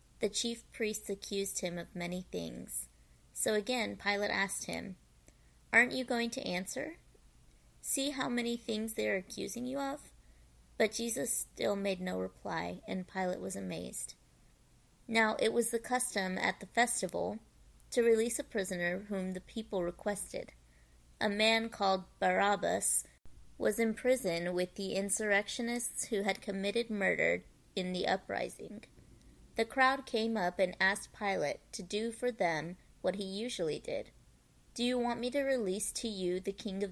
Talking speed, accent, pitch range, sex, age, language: 155 wpm, American, 185-235 Hz, female, 30-49, English